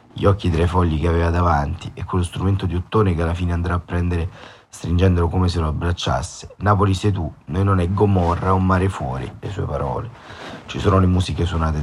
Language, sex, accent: Italian, male, native